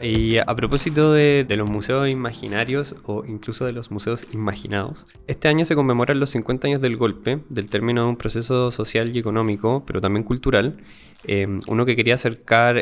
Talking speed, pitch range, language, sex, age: 185 wpm, 100-125 Hz, Spanish, male, 20-39